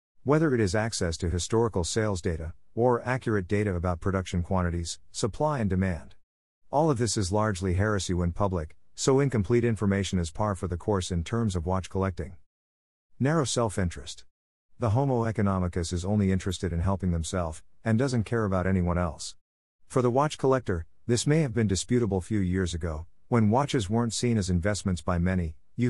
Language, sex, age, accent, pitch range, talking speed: English, male, 50-69, American, 90-115 Hz, 175 wpm